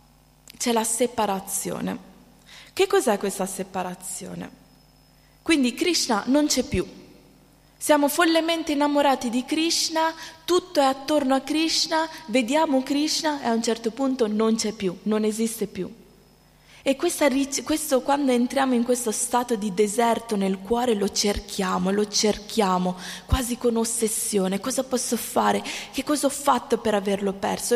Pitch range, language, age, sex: 200-275 Hz, Italian, 20-39, female